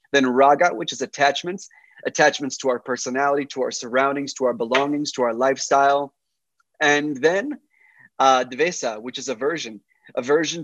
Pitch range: 135-165 Hz